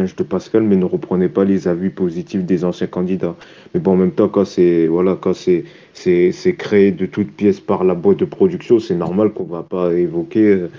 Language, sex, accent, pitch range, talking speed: French, male, French, 90-105 Hz, 215 wpm